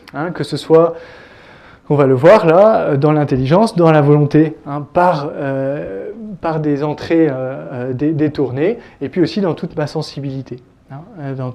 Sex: male